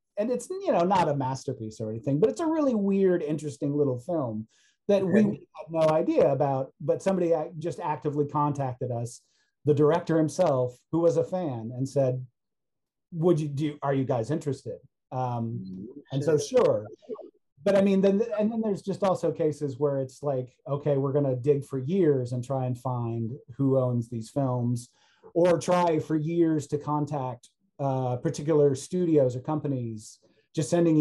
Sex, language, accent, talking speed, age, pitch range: male, English, American, 170 wpm, 40-59, 130-165 Hz